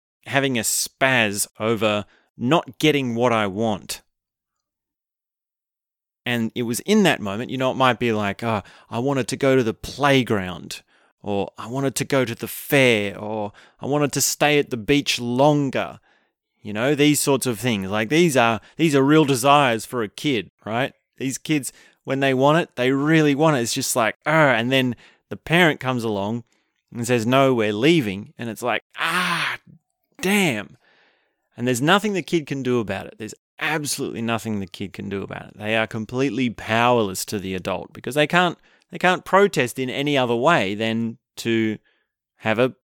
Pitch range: 110-140 Hz